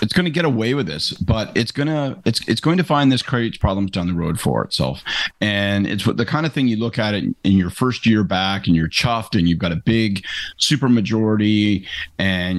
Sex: male